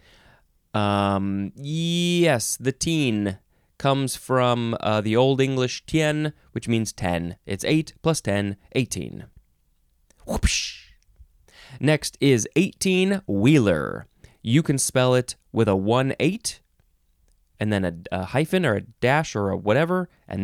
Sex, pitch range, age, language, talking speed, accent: male, 105-150 Hz, 20-39, English, 130 wpm, American